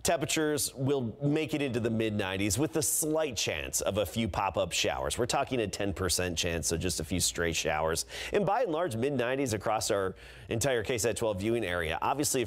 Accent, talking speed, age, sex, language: American, 210 wpm, 30-49, male, English